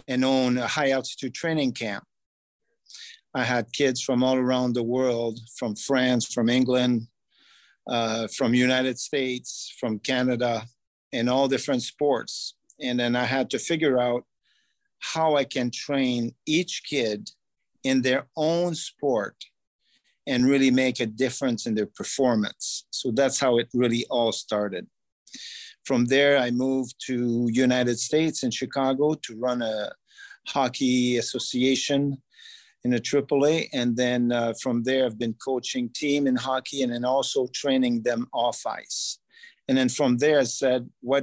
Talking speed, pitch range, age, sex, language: 150 wpm, 120-140 Hz, 50-69, male, English